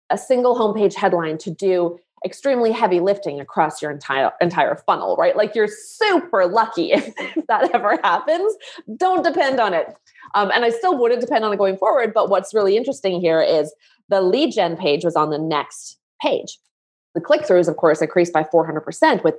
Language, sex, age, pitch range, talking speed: English, female, 20-39, 175-285 Hz, 190 wpm